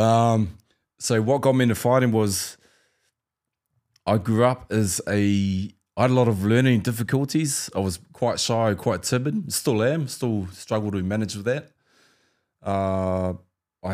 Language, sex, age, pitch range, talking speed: English, male, 20-39, 95-115 Hz, 150 wpm